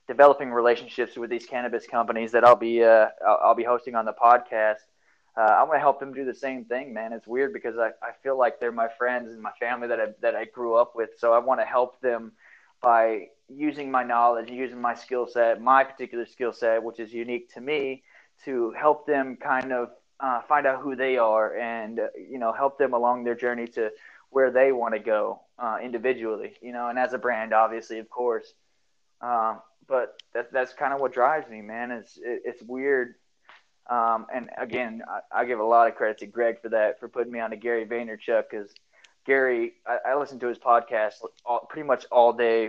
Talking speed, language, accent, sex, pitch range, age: 220 wpm, English, American, male, 115-130 Hz, 20-39